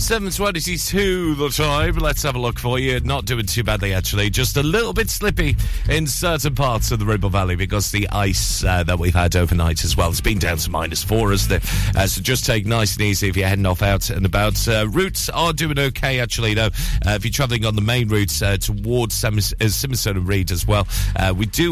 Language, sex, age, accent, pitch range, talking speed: English, male, 40-59, British, 95-125 Hz, 245 wpm